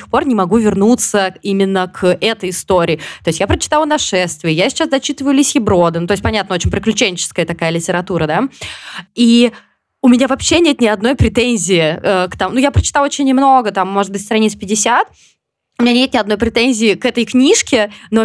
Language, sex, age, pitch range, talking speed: Russian, female, 20-39, 195-255 Hz, 185 wpm